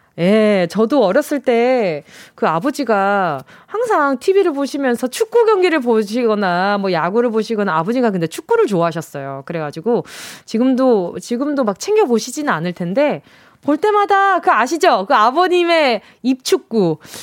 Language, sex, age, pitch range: Korean, female, 20-39, 205-320 Hz